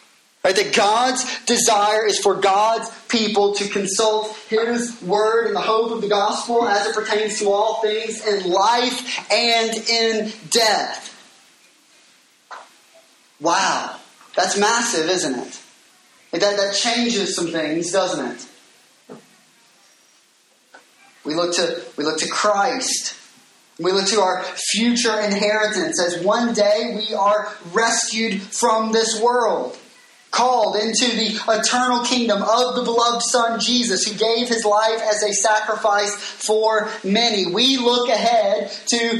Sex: male